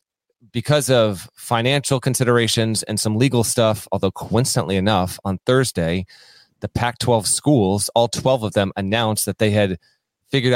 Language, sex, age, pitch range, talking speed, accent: English, male, 30-49, 110-135 Hz, 150 wpm, American